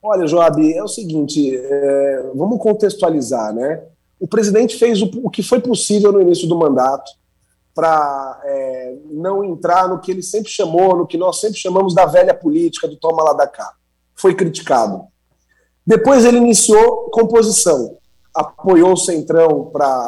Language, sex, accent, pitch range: Portuguese, male, Brazilian, 160-215 Hz